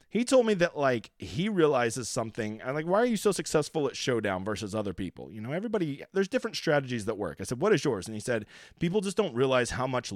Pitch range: 125-185 Hz